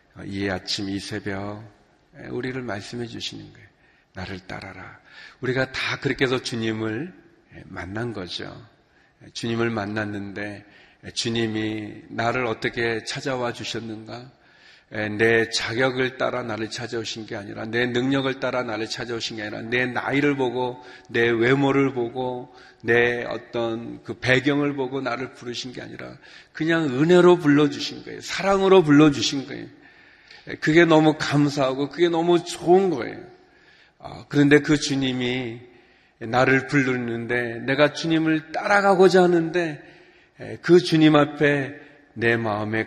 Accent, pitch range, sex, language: native, 110-140 Hz, male, Korean